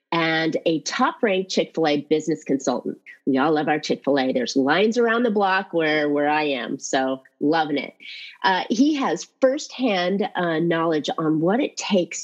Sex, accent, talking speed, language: female, American, 160 wpm, English